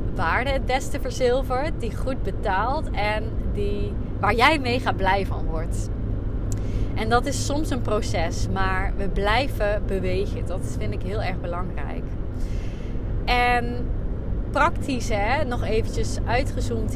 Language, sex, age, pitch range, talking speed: Dutch, female, 20-39, 95-115 Hz, 130 wpm